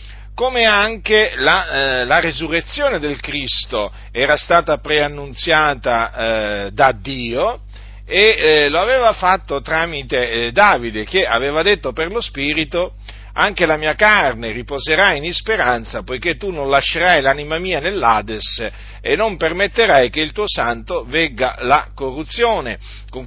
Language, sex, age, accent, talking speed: Italian, male, 50-69, native, 135 wpm